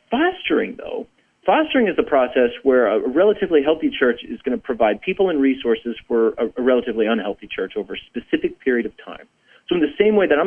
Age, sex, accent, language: 40-59, male, American, English